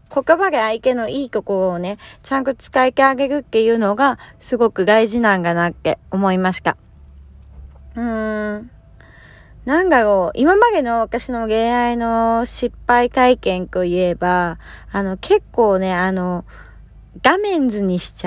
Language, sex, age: Japanese, female, 20-39